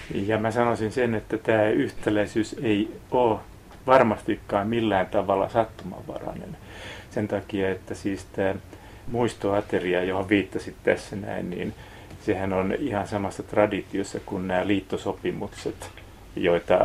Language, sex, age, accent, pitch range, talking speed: Finnish, male, 30-49, native, 95-110 Hz, 120 wpm